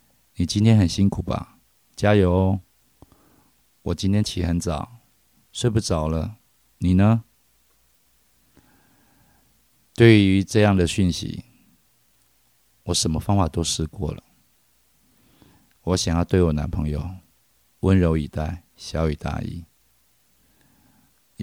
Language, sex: Chinese, male